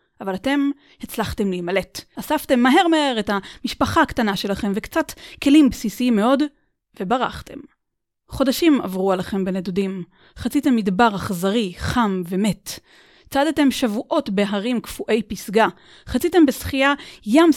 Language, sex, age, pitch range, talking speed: Hebrew, female, 30-49, 200-280 Hz, 115 wpm